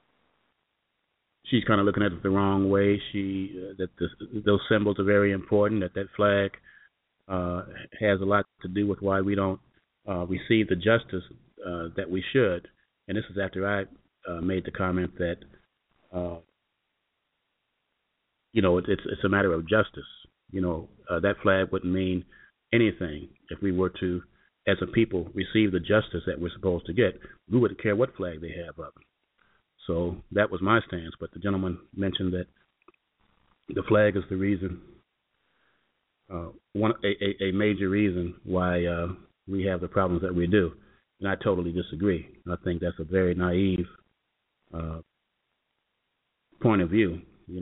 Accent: American